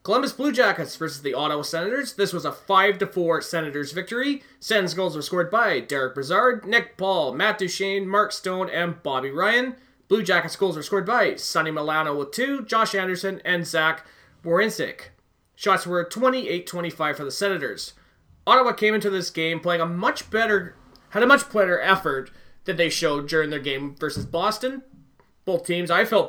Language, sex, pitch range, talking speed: English, male, 155-205 Hz, 175 wpm